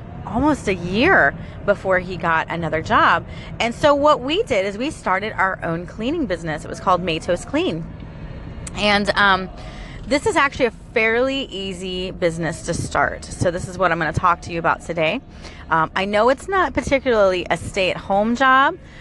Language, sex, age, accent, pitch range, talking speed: English, female, 30-49, American, 170-240 Hz, 180 wpm